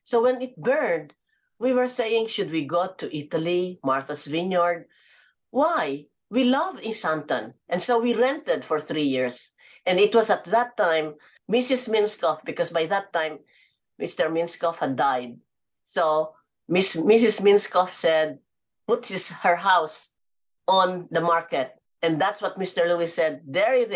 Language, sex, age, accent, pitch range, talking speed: English, female, 50-69, Filipino, 160-205 Hz, 155 wpm